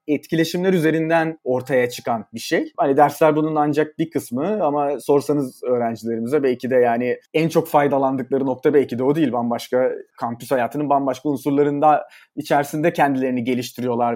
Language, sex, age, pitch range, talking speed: Turkish, male, 30-49, 125-165 Hz, 145 wpm